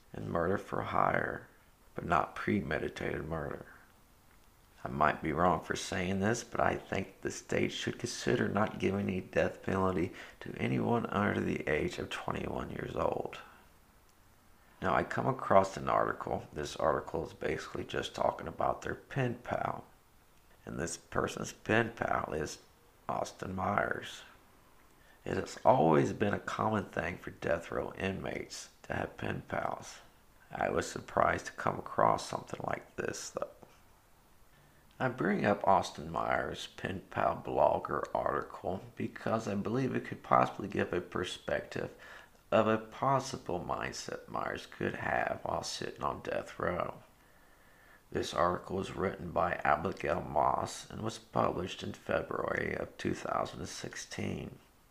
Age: 50-69